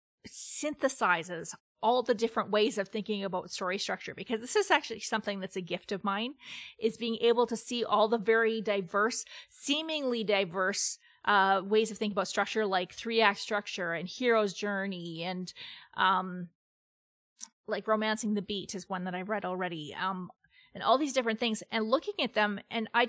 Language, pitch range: English, 195-230 Hz